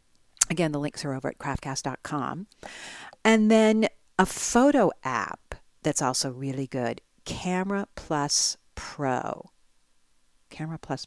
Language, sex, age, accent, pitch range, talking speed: English, female, 50-69, American, 135-190 Hz, 100 wpm